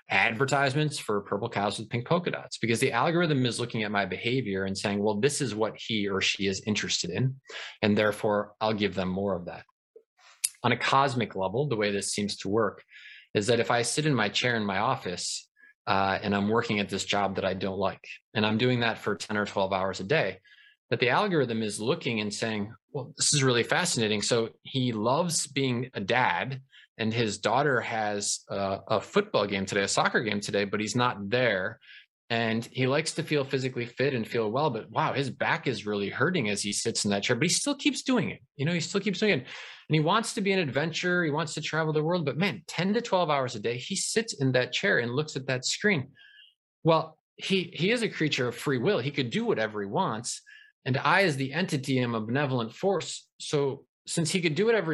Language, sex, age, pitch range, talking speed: English, male, 20-39, 105-160 Hz, 230 wpm